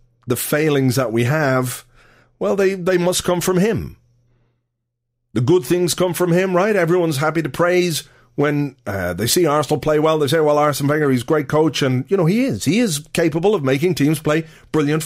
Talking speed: 205 wpm